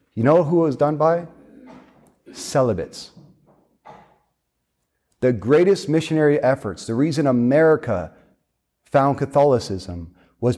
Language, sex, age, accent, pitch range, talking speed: English, male, 30-49, American, 110-145 Hz, 100 wpm